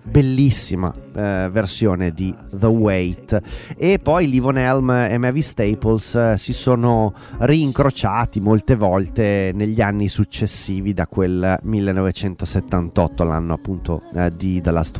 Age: 30-49